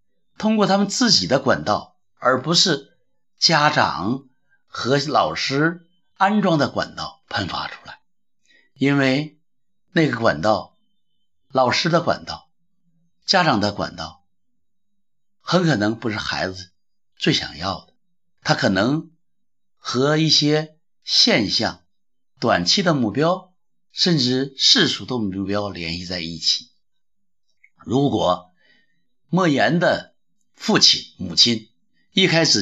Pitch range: 105-180 Hz